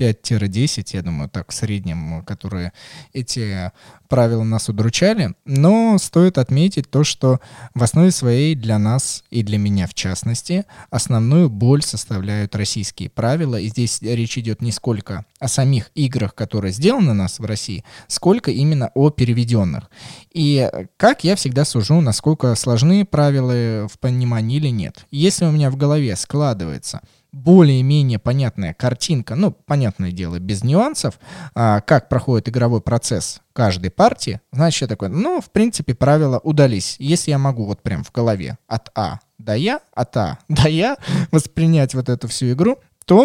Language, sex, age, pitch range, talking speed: Russian, male, 20-39, 110-150 Hz, 155 wpm